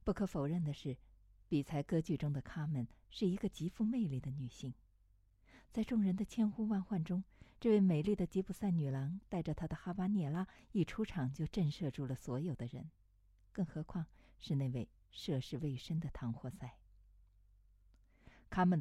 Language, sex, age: Chinese, female, 50-69